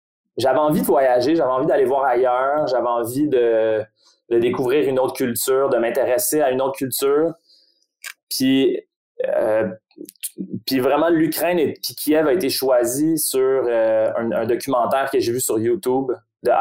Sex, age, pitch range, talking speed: male, 20-39, 115-170 Hz, 165 wpm